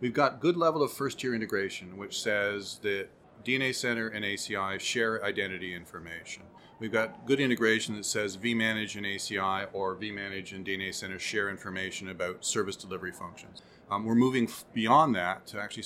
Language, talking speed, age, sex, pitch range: English, 170 wpm, 40-59, male, 100-125 Hz